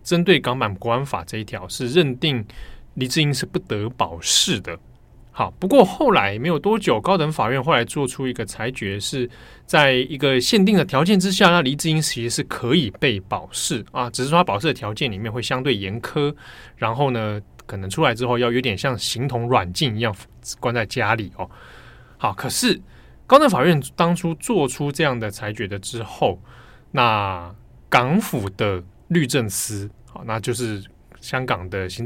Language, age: Chinese, 20-39